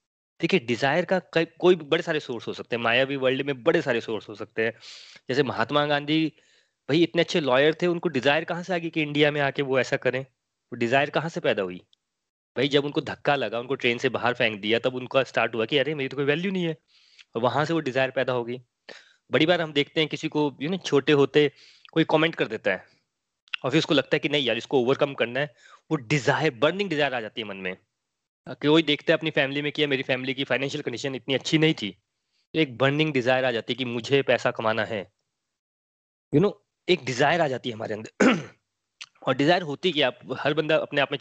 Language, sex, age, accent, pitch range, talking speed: Hindi, male, 20-39, native, 125-155 Hz, 235 wpm